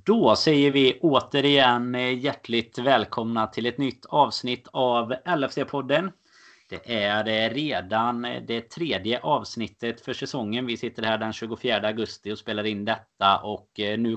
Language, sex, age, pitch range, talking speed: Swedish, male, 30-49, 110-135 Hz, 135 wpm